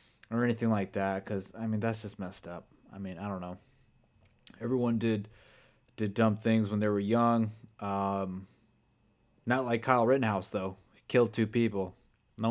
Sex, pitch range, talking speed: male, 105-120 Hz, 175 wpm